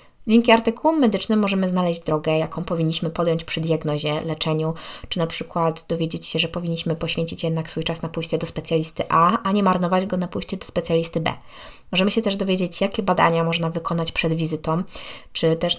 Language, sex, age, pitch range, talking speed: Polish, female, 20-39, 165-215 Hz, 185 wpm